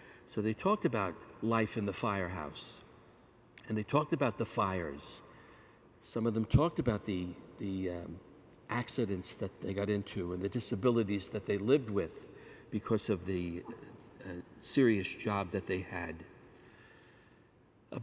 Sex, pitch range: male, 100-120 Hz